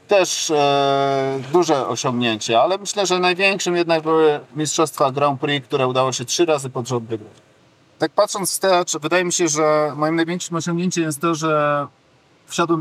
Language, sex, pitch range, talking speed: Polish, male, 145-175 Hz, 165 wpm